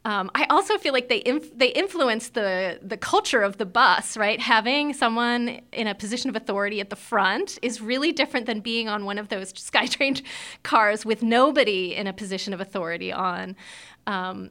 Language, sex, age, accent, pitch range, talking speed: English, female, 30-49, American, 205-265 Hz, 190 wpm